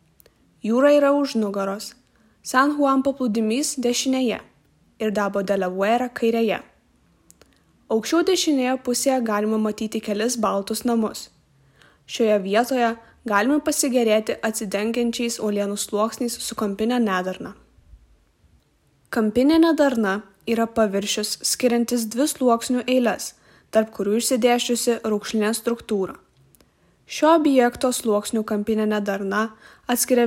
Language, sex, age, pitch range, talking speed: Czech, female, 20-39, 210-245 Hz, 95 wpm